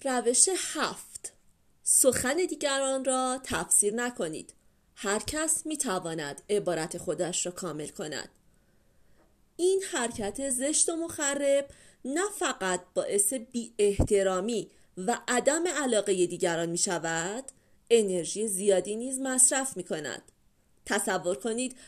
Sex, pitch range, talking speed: female, 185-270 Hz, 110 wpm